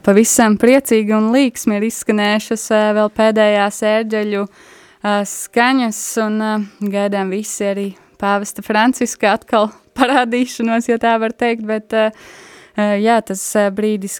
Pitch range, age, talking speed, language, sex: 200-220 Hz, 20-39, 110 wpm, English, female